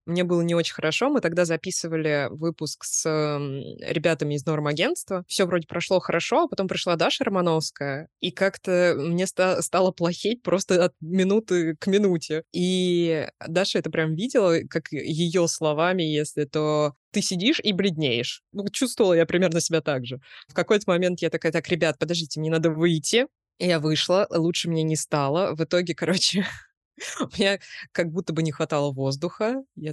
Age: 20-39